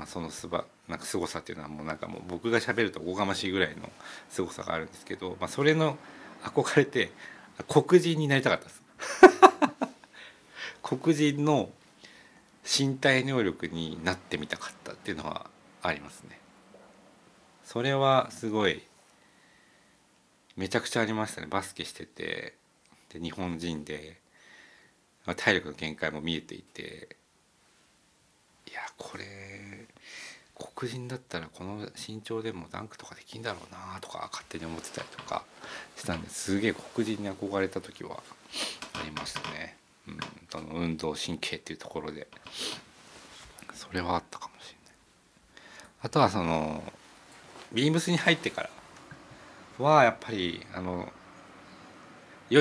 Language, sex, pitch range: Japanese, male, 85-125 Hz